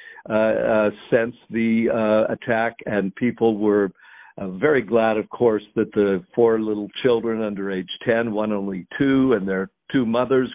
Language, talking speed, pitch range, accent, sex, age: English, 165 wpm, 105-115 Hz, American, male, 60-79